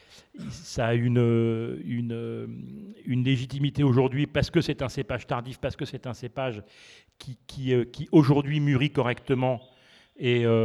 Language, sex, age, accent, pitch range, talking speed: French, male, 40-59, French, 115-140 Hz, 130 wpm